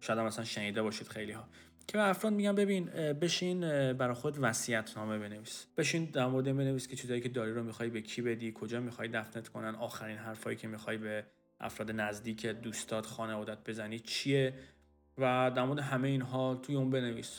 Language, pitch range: Persian, 115-135 Hz